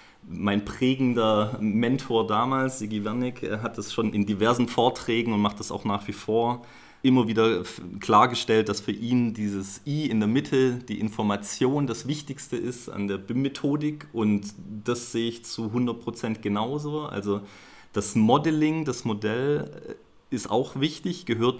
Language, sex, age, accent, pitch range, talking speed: German, male, 30-49, German, 105-125 Hz, 150 wpm